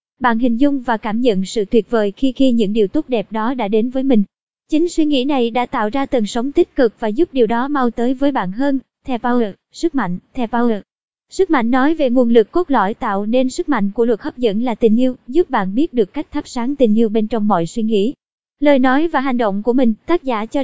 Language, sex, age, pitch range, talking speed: Vietnamese, male, 20-39, 220-270 Hz, 260 wpm